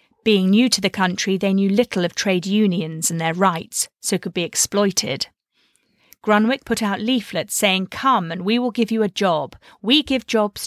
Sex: female